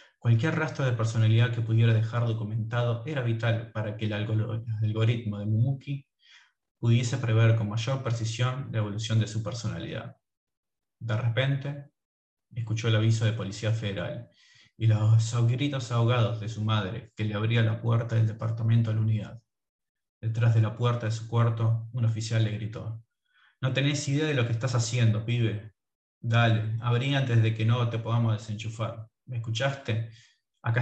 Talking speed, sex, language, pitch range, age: 160 wpm, male, Spanish, 110-120 Hz, 20-39